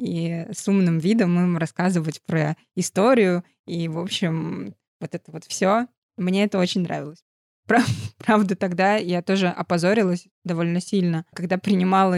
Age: 20-39